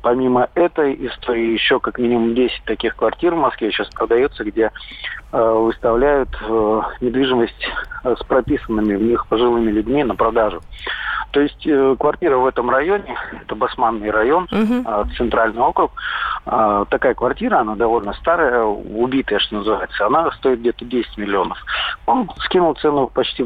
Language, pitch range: Russian, 115-145 Hz